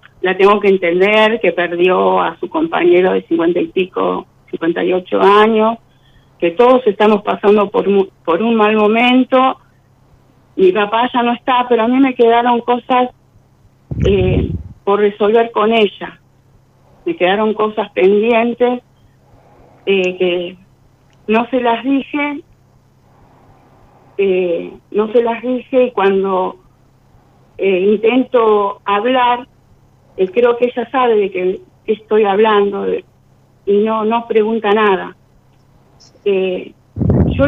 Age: 50-69